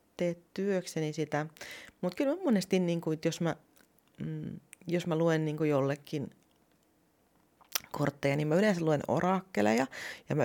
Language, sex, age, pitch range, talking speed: Finnish, female, 30-49, 135-180 Hz, 130 wpm